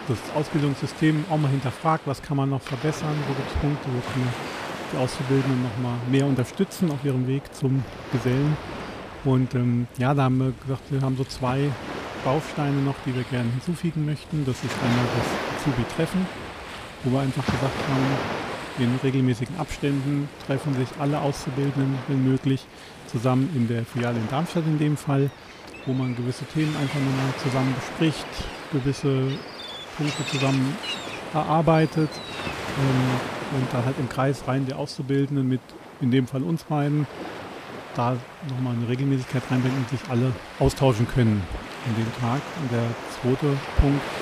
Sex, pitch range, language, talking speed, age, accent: male, 130-145 Hz, German, 155 wpm, 40-59, German